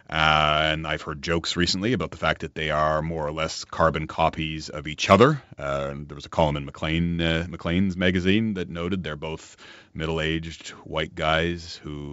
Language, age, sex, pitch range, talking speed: English, 30-49, male, 80-105 Hz, 195 wpm